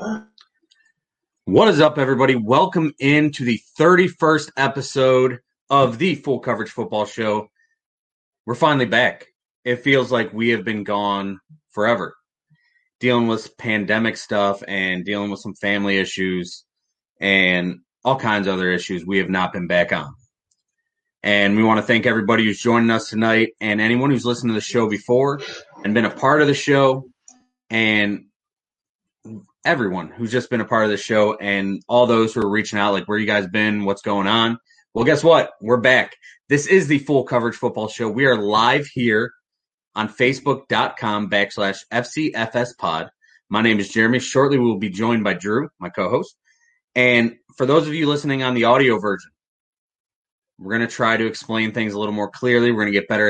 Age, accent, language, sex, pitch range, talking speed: 30-49, American, English, male, 105-135 Hz, 180 wpm